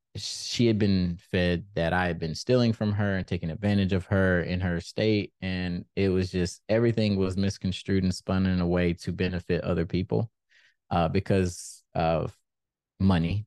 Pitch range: 85-100 Hz